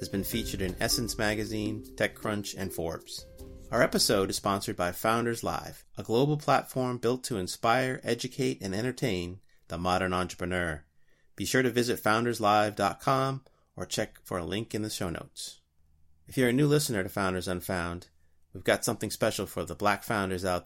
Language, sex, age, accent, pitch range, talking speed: English, male, 30-49, American, 90-115 Hz, 170 wpm